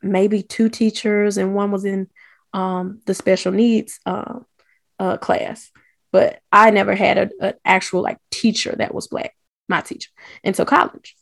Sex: female